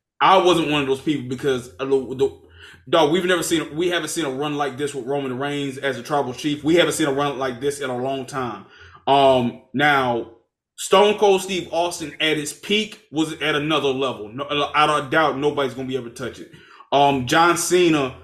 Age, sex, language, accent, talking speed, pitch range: 20-39, male, English, American, 205 wpm, 130-160 Hz